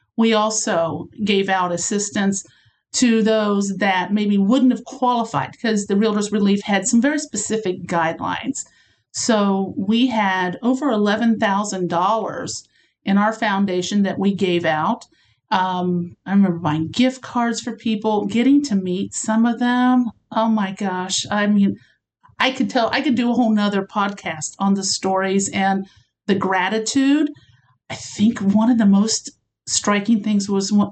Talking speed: 150 wpm